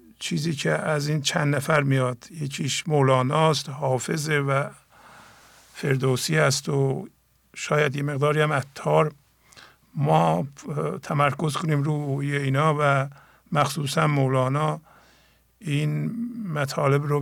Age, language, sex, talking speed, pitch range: 50-69, English, male, 105 wpm, 135-155 Hz